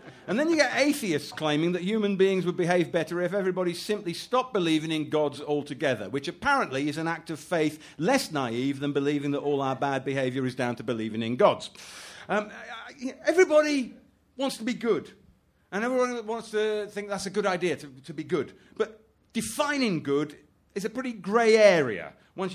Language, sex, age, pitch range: English, male, 50-69, 140-200 Hz